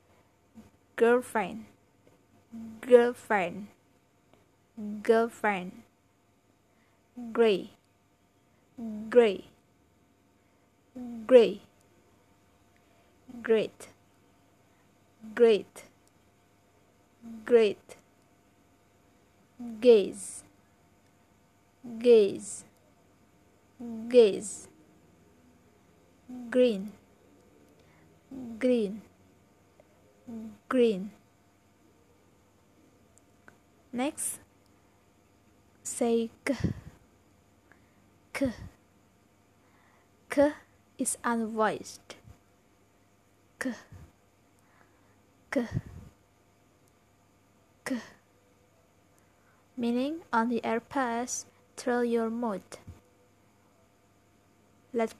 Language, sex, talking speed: Indonesian, female, 40 wpm